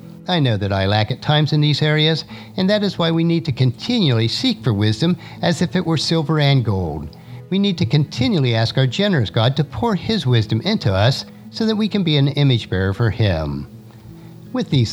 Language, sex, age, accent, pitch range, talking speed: English, male, 50-69, American, 110-170 Hz, 215 wpm